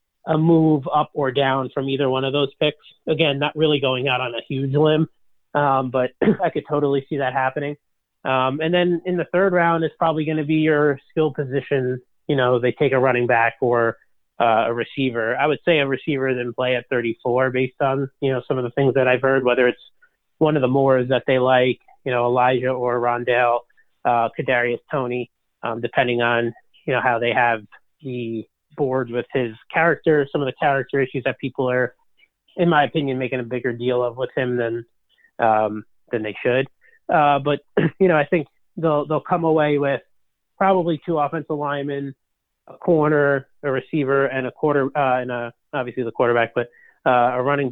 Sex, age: male, 30-49